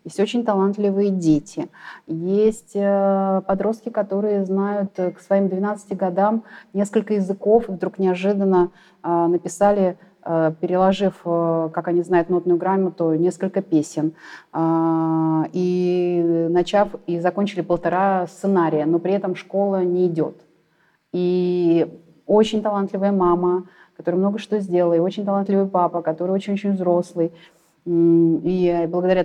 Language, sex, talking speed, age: Russian, female, 110 wpm, 30-49